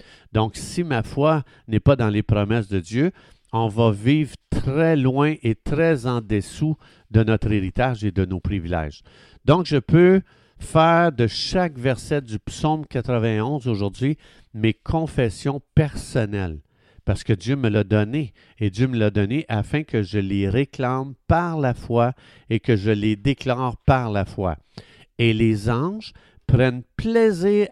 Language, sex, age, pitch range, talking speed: French, male, 50-69, 110-145 Hz, 160 wpm